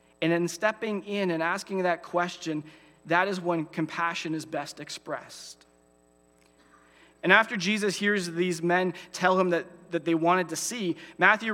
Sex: male